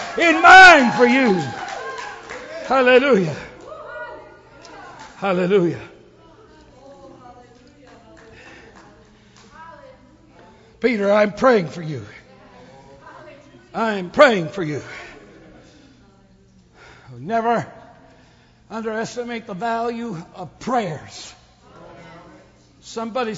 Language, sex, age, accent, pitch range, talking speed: English, male, 60-79, American, 185-260 Hz, 55 wpm